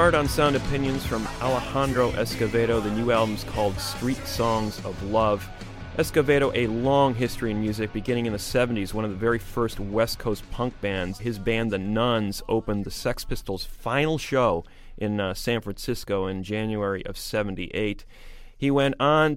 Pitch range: 105-125 Hz